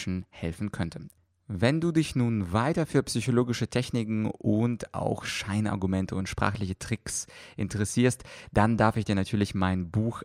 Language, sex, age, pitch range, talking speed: German, male, 30-49, 95-120 Hz, 140 wpm